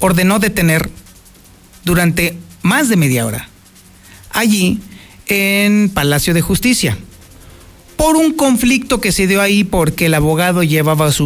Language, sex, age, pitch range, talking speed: Spanish, male, 40-59, 150-215 Hz, 130 wpm